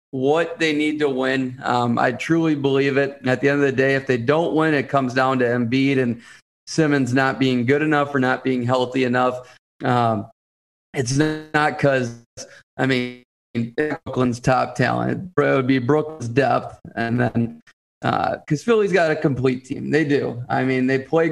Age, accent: 30-49, American